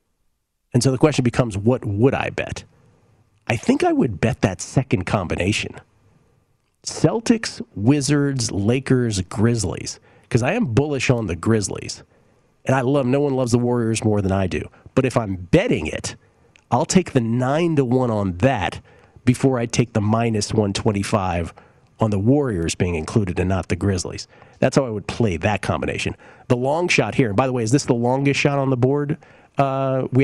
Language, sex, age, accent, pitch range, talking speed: English, male, 40-59, American, 105-135 Hz, 185 wpm